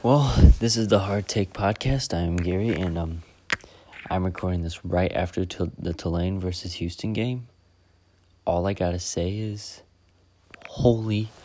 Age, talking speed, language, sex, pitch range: 30-49, 140 wpm, English, male, 85-100 Hz